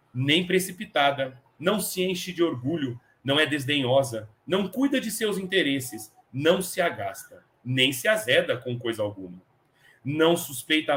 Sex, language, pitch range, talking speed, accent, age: male, Portuguese, 120-180 Hz, 140 wpm, Brazilian, 40-59